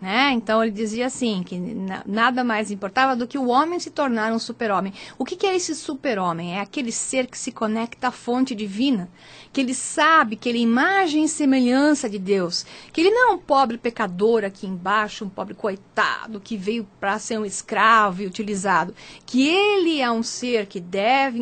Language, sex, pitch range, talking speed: Portuguese, female, 215-275 Hz, 195 wpm